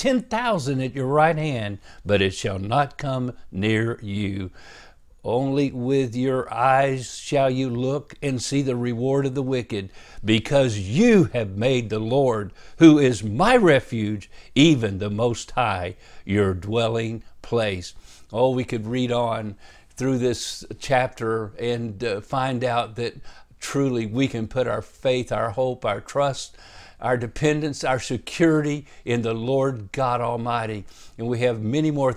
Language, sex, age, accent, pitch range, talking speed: English, male, 60-79, American, 110-135 Hz, 150 wpm